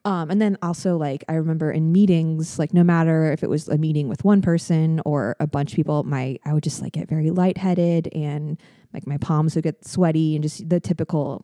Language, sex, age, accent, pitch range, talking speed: English, female, 20-39, American, 150-175 Hz, 230 wpm